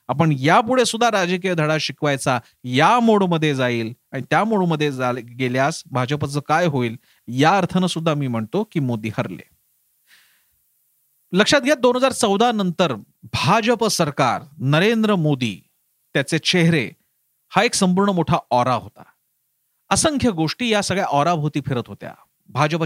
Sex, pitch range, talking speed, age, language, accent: male, 145-190 Hz, 130 wpm, 40-59, Marathi, native